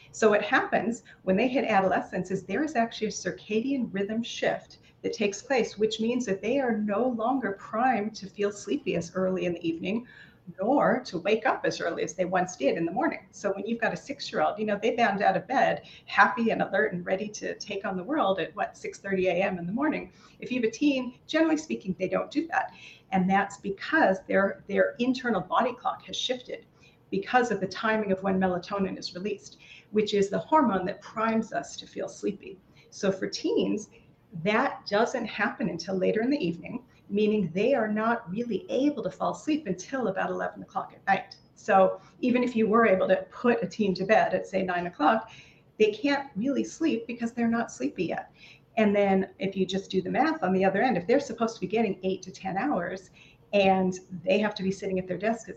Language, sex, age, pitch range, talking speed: English, female, 40-59, 190-240 Hz, 215 wpm